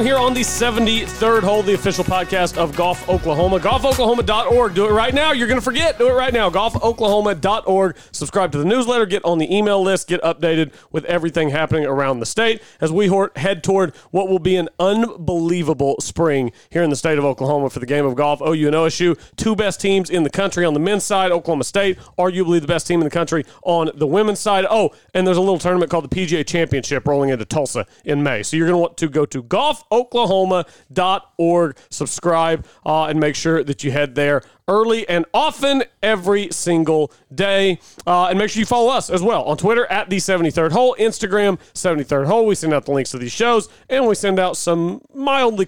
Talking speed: 210 wpm